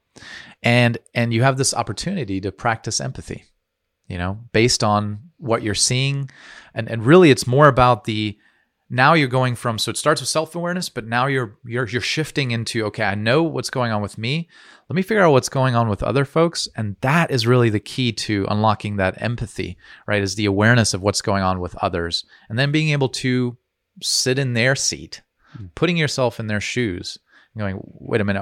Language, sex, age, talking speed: English, male, 30-49, 200 wpm